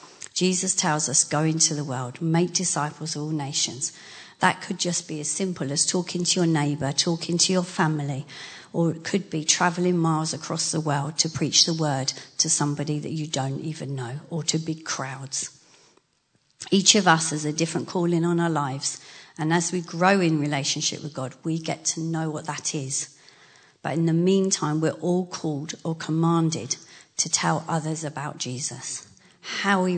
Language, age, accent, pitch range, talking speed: English, 40-59, British, 150-170 Hz, 185 wpm